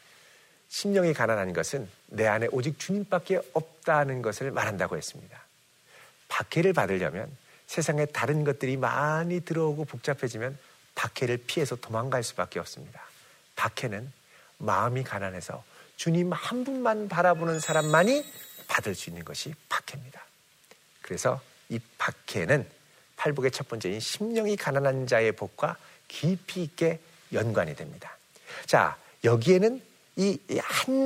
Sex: male